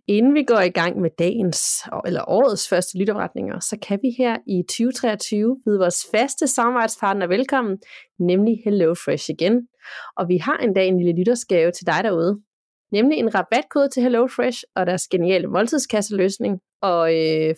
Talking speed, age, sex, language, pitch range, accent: 160 wpm, 30-49, female, Danish, 180-245 Hz, native